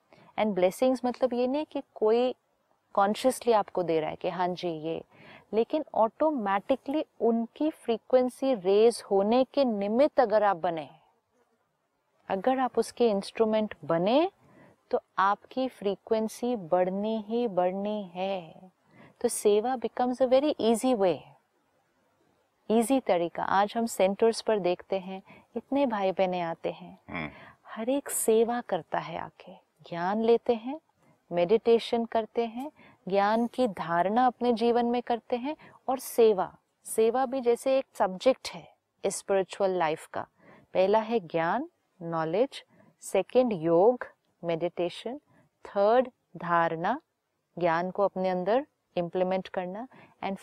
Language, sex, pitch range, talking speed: Hindi, female, 190-245 Hz, 125 wpm